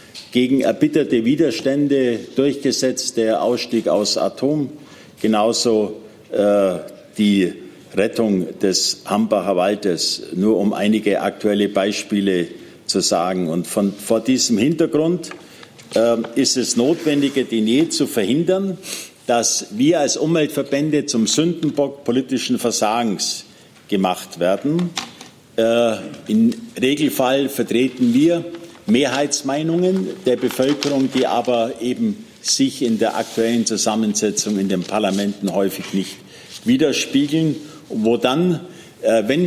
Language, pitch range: German, 115-155 Hz